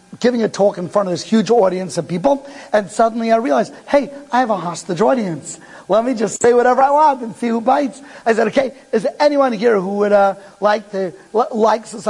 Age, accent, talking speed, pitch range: 50-69, American, 235 wpm, 190-235 Hz